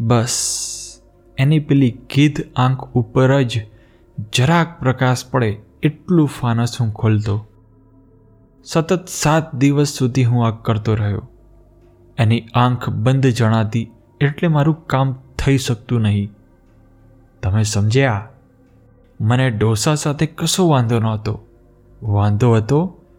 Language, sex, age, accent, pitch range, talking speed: Gujarati, male, 20-39, native, 110-130 Hz, 110 wpm